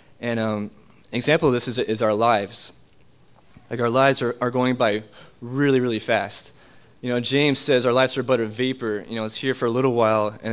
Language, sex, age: English, male, 20-39